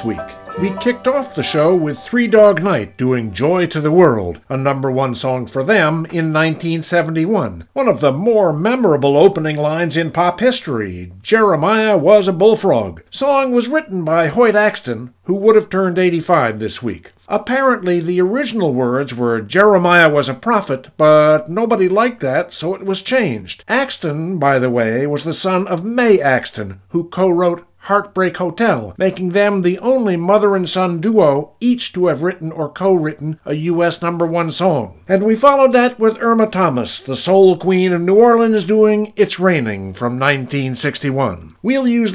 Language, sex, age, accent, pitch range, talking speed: English, male, 50-69, American, 145-205 Hz, 170 wpm